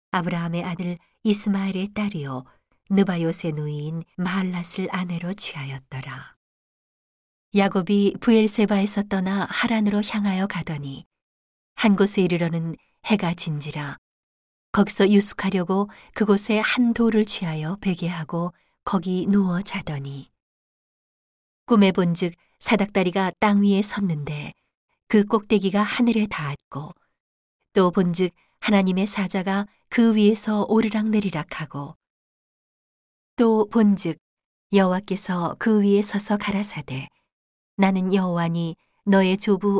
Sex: female